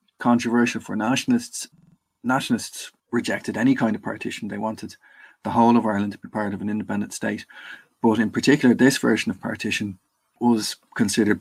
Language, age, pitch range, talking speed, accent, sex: English, 30-49, 105-120 Hz, 165 wpm, Irish, male